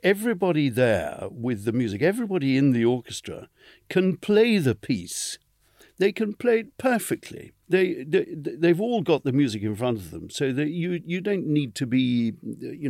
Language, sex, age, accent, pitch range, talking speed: English, male, 60-79, British, 125-170 Hz, 180 wpm